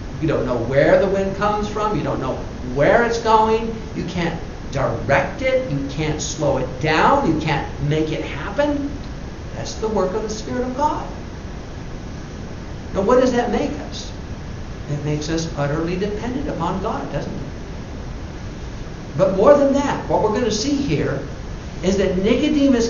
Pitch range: 155-230 Hz